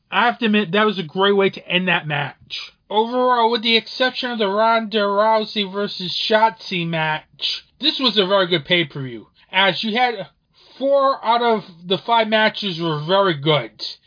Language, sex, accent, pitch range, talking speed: English, male, American, 180-220 Hz, 180 wpm